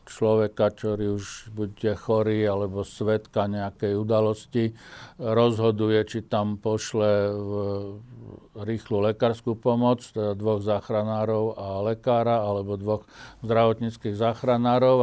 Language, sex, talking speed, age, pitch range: Slovak, male, 105 wpm, 50-69, 105-115 Hz